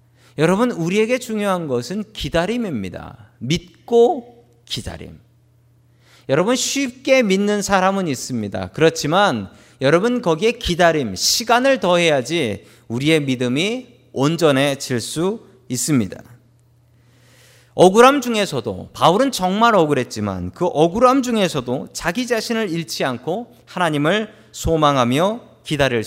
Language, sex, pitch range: Korean, male, 120-200 Hz